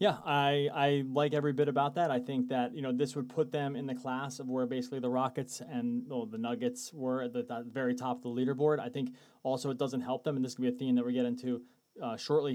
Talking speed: 275 wpm